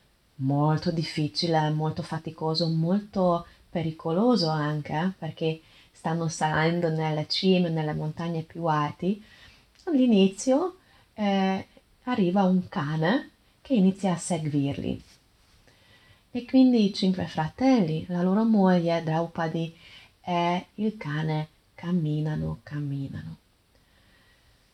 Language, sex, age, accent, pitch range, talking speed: Italian, female, 30-49, native, 155-190 Hz, 90 wpm